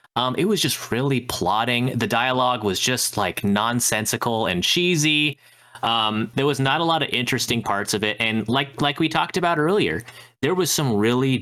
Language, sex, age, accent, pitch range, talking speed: English, male, 30-49, American, 115-150 Hz, 190 wpm